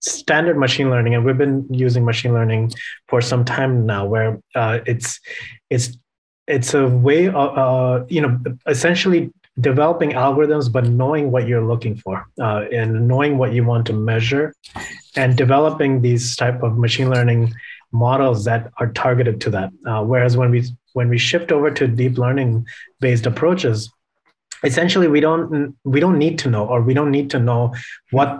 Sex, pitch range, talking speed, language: male, 120-140 Hz, 170 wpm, English